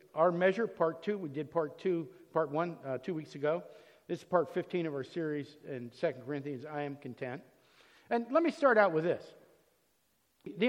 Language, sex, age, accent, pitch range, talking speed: English, male, 60-79, American, 175-230 Hz, 195 wpm